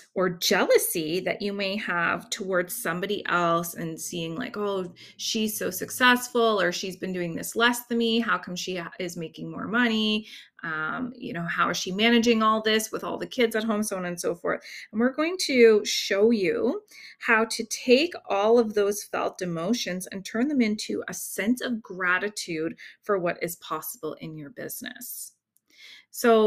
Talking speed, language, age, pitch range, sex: 185 wpm, English, 30-49, 175-230 Hz, female